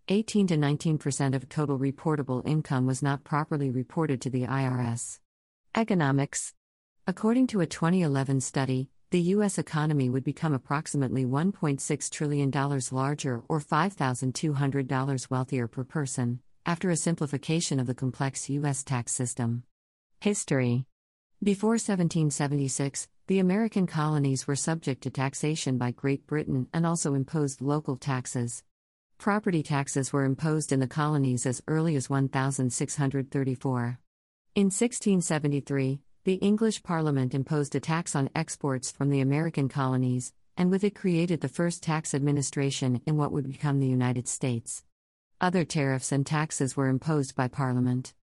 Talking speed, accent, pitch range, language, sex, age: 130 wpm, American, 130-160 Hz, English, female, 50-69